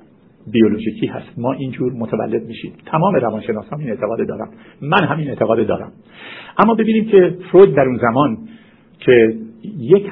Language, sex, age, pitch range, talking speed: Persian, male, 50-69, 120-185 Hz, 140 wpm